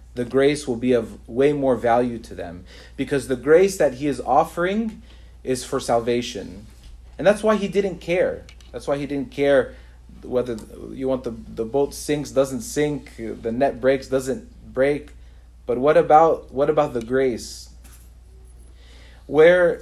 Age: 30-49